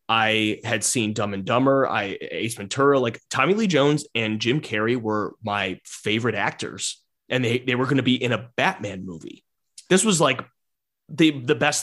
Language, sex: English, male